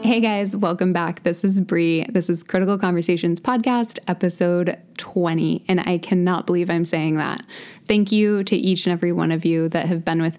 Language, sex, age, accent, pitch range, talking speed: English, female, 10-29, American, 170-200 Hz, 195 wpm